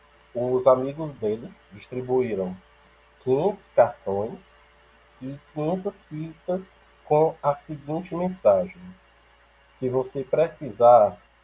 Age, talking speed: 20-39, 85 wpm